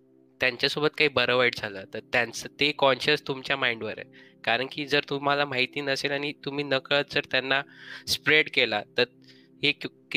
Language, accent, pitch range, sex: Marathi, native, 115-135 Hz, male